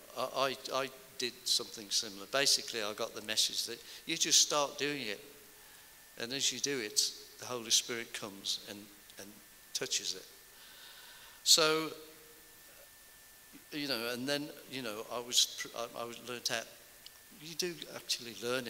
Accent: British